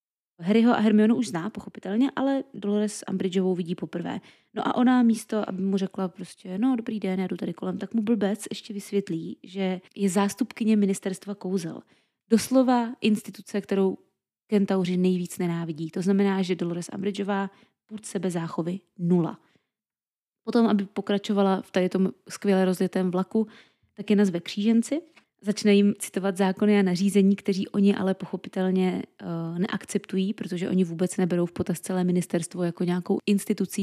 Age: 20-39